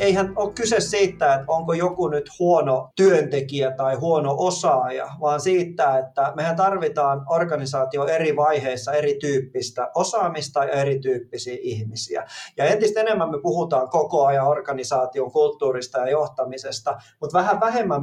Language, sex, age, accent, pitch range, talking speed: Finnish, male, 30-49, native, 135-180 Hz, 135 wpm